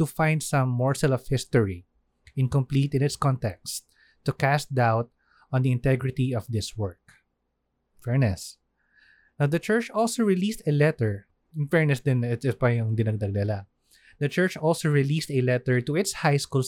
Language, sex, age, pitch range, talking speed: Filipino, male, 20-39, 120-155 Hz, 160 wpm